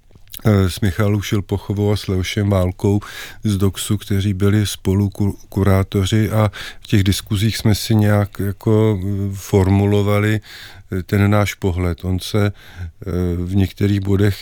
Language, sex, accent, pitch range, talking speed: Czech, male, native, 95-105 Hz, 130 wpm